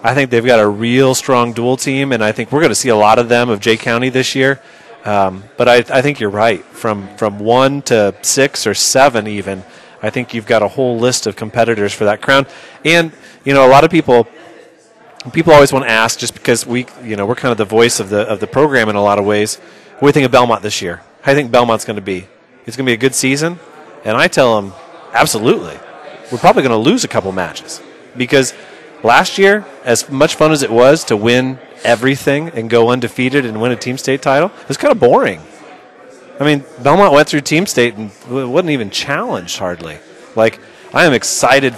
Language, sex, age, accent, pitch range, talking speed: English, male, 30-49, American, 110-135 Hz, 235 wpm